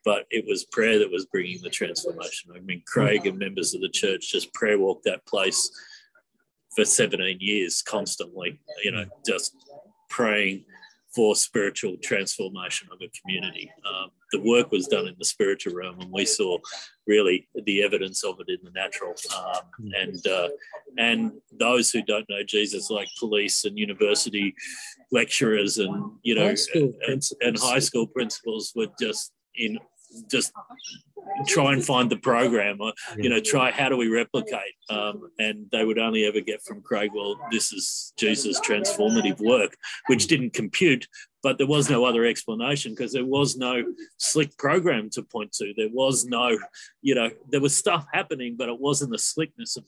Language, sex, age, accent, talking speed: English, male, 40-59, Australian, 170 wpm